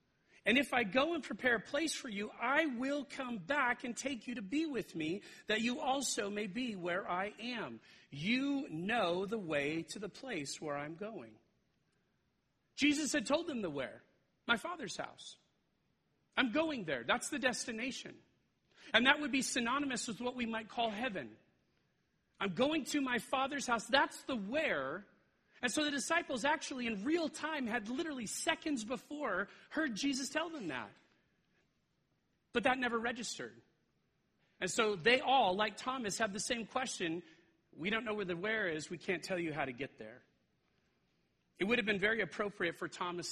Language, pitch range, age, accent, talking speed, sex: English, 175-270 Hz, 40-59, American, 180 wpm, male